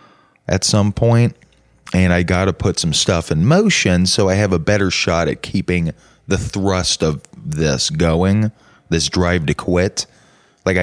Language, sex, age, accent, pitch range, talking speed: English, male, 20-39, American, 85-125 Hz, 165 wpm